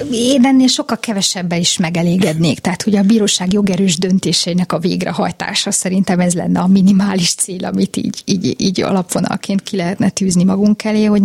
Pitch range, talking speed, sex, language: 185-225 Hz, 165 wpm, female, Hungarian